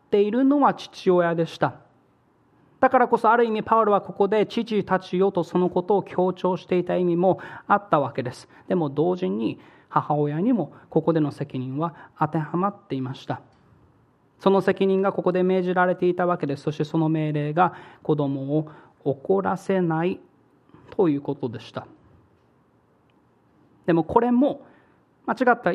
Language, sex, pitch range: Japanese, male, 150-195 Hz